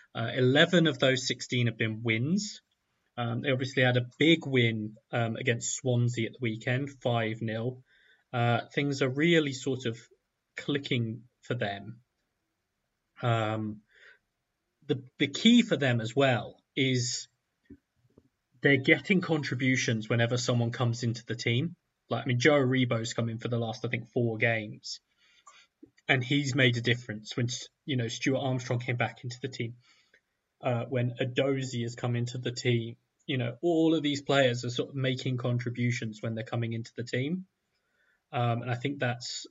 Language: English